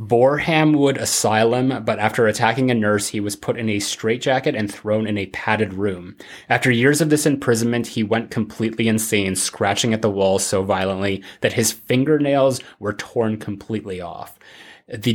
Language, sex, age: English, male, 20-39